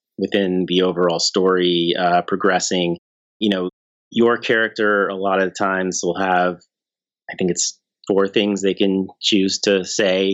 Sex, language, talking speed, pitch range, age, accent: male, English, 150 wpm, 90-105 Hz, 30-49, American